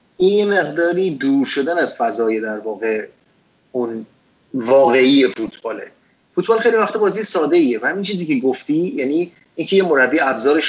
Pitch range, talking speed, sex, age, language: 120-195 Hz, 150 wpm, male, 30-49, Persian